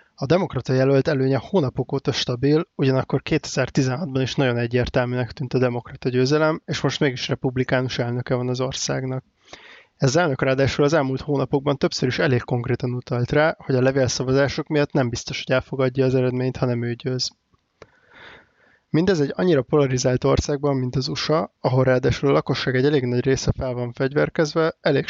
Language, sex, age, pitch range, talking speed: Hungarian, male, 20-39, 125-140 Hz, 165 wpm